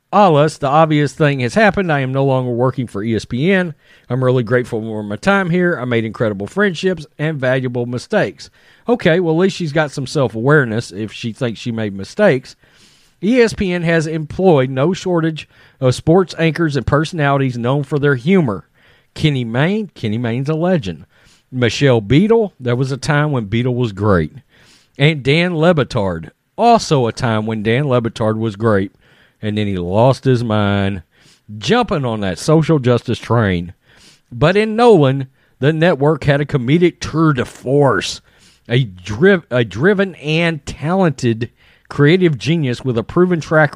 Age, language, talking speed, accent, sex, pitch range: 40-59, English, 160 wpm, American, male, 115-165 Hz